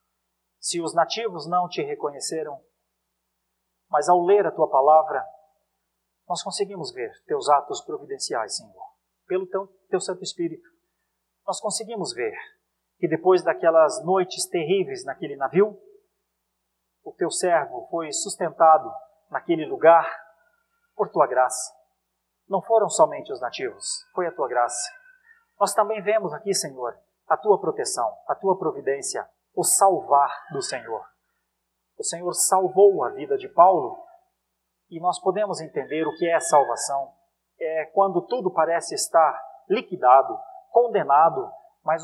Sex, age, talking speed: male, 40-59, 130 wpm